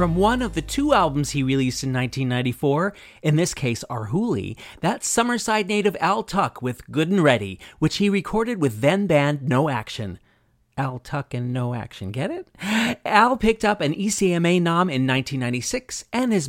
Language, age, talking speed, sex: English, 30-49, 180 wpm, male